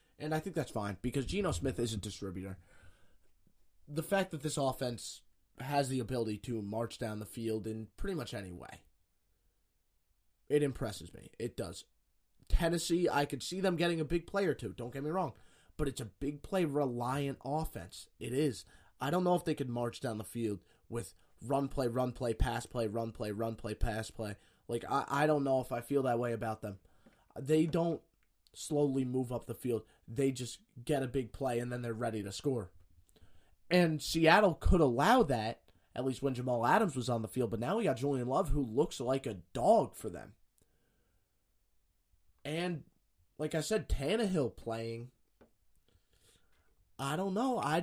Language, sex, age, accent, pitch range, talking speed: English, male, 20-39, American, 105-150 Hz, 185 wpm